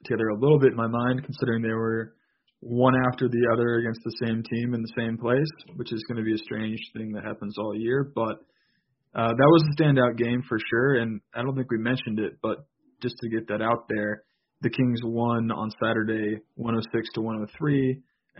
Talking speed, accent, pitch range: 205 wpm, American, 110-135 Hz